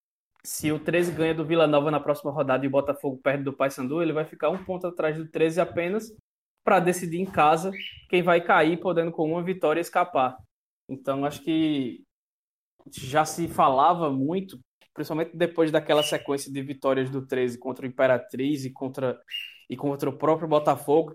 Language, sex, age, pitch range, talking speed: Portuguese, male, 20-39, 145-175 Hz, 175 wpm